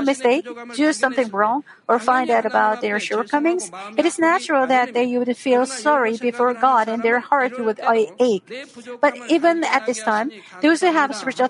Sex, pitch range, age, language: female, 225-280 Hz, 50-69, Korean